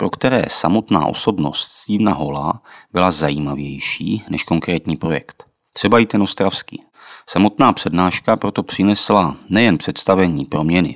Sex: male